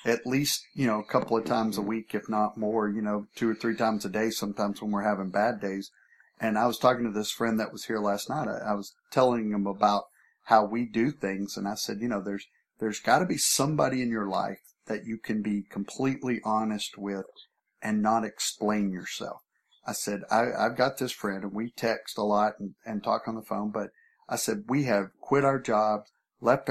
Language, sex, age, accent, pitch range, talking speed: English, male, 50-69, American, 105-120 Hz, 225 wpm